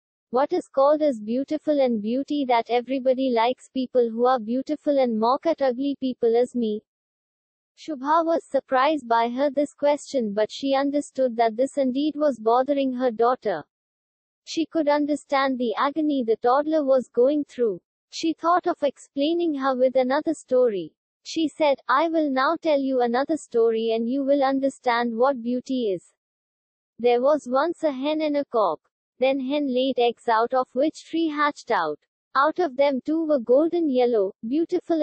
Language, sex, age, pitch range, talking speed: English, female, 20-39, 245-295 Hz, 170 wpm